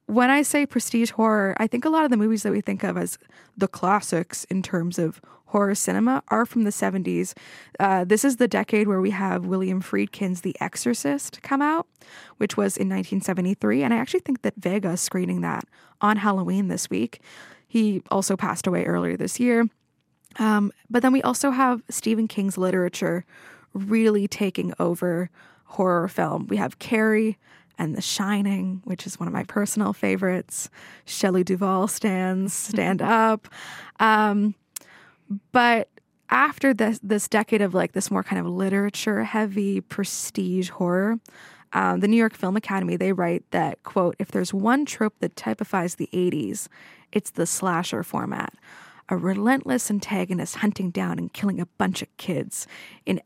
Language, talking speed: English, 165 wpm